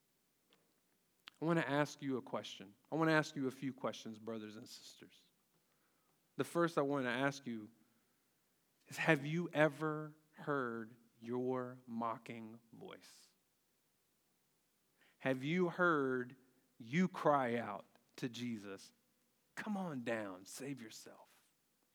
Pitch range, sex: 140-210 Hz, male